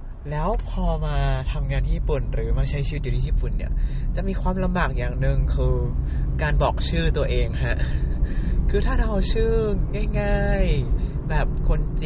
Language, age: Thai, 20-39